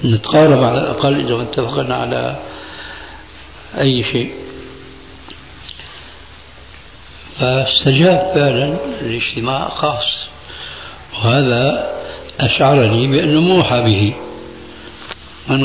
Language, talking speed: Arabic, 70 wpm